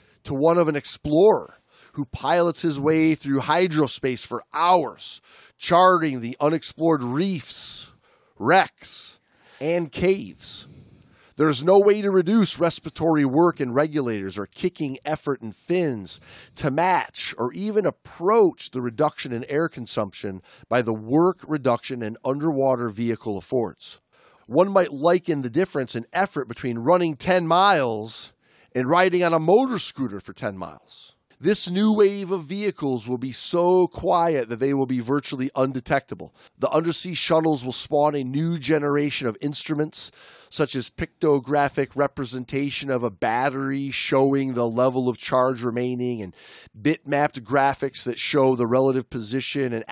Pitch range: 125-165 Hz